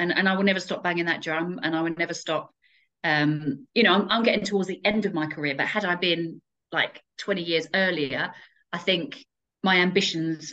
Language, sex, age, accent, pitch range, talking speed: English, female, 40-59, British, 150-185 Hz, 215 wpm